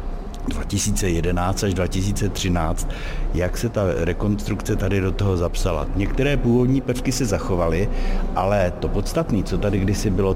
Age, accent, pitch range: 60-79, native, 95-110 Hz